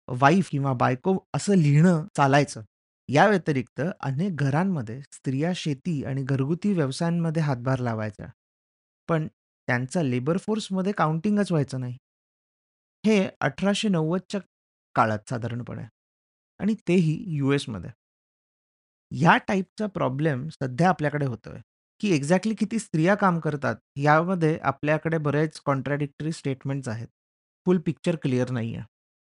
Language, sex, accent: Marathi, male, native